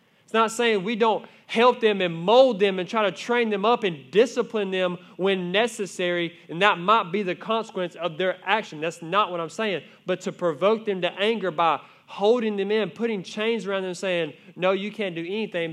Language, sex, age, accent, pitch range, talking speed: English, male, 20-39, American, 160-200 Hz, 210 wpm